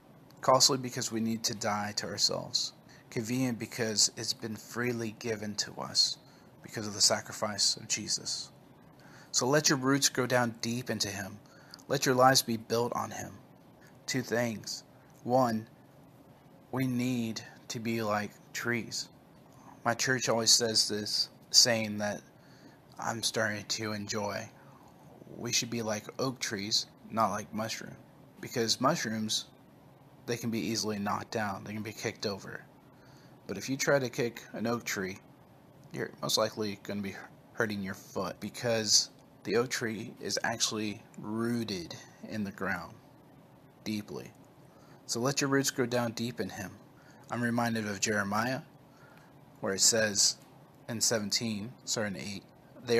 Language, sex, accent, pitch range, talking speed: English, male, American, 110-135 Hz, 145 wpm